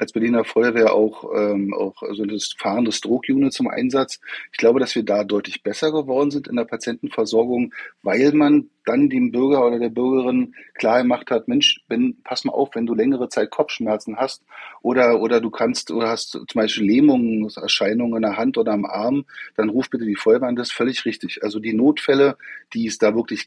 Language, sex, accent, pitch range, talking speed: German, male, German, 110-150 Hz, 200 wpm